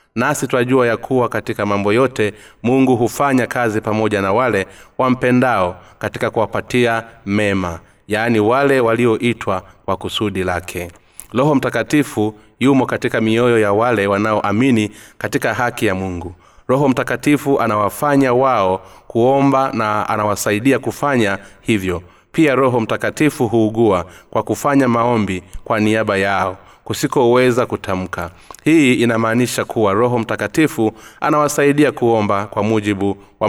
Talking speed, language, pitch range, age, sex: 120 wpm, Swahili, 100-125 Hz, 30-49, male